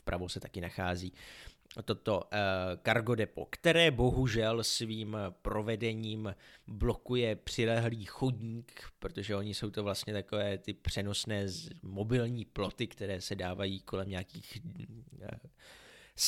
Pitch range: 100-130 Hz